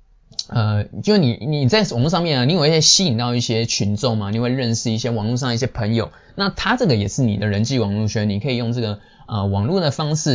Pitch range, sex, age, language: 110-140 Hz, male, 20-39, Chinese